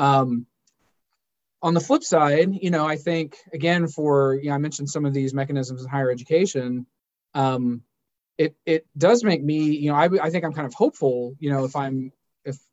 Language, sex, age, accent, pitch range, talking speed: English, male, 20-39, American, 130-155 Hz, 200 wpm